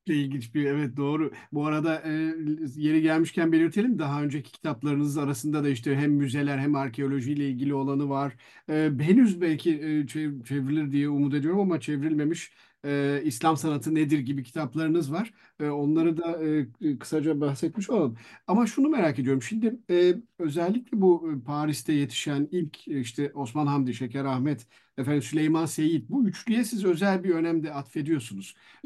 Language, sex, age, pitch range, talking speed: Turkish, male, 50-69, 140-175 Hz, 135 wpm